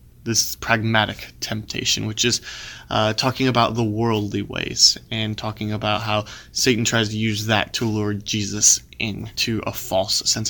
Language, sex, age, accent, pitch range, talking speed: English, male, 20-39, American, 105-120 Hz, 155 wpm